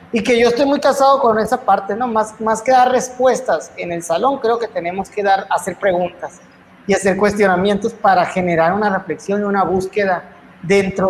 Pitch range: 185-230 Hz